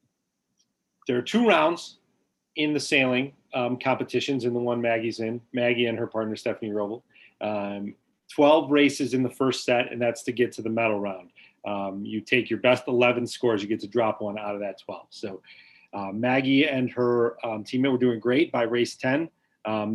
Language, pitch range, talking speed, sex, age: English, 115-130 Hz, 195 wpm, male, 30-49